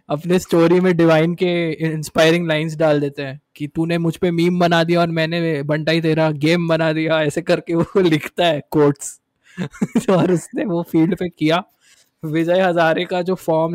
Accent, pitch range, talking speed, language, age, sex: native, 140-165 Hz, 180 wpm, Hindi, 20-39, male